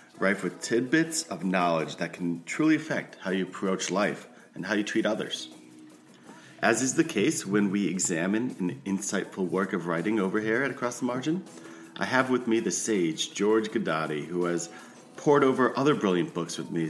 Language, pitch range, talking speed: English, 85-110 Hz, 190 wpm